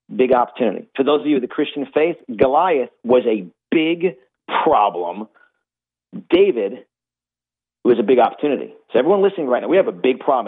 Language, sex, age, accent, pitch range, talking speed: English, male, 40-59, American, 120-150 Hz, 170 wpm